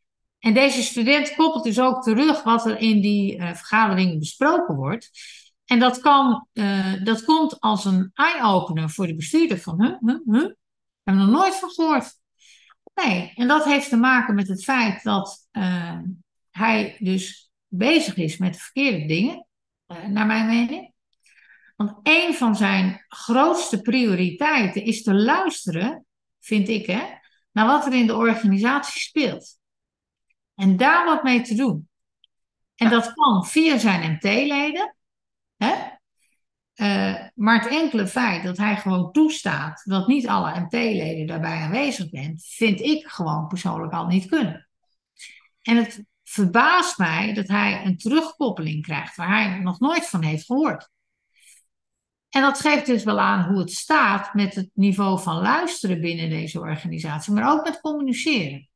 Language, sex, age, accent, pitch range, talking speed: Dutch, female, 60-79, Dutch, 185-275 Hz, 155 wpm